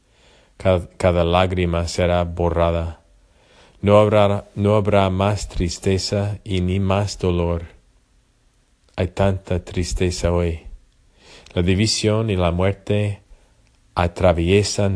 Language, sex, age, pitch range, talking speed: English, male, 50-69, 85-95 Hz, 90 wpm